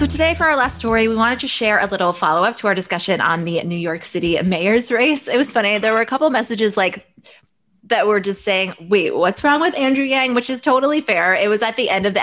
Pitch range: 180-230 Hz